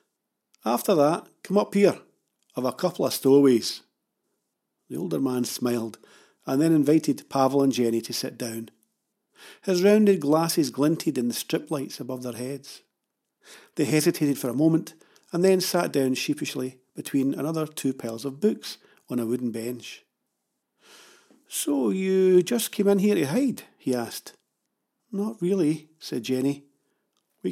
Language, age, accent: English, 50-69, British